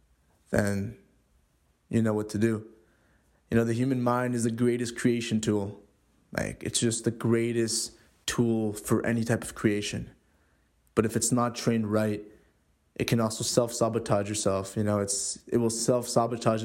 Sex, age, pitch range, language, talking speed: male, 20-39, 105-115 Hz, English, 160 wpm